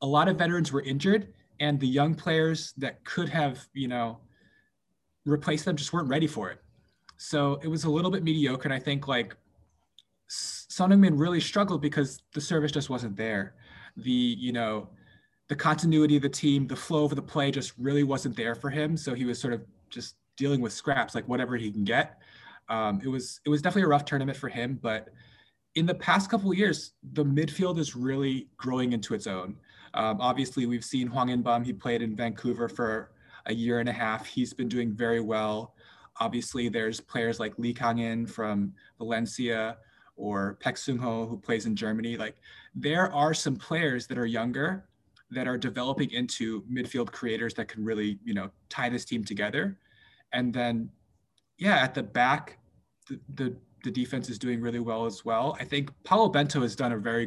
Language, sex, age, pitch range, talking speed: English, male, 20-39, 115-145 Hz, 190 wpm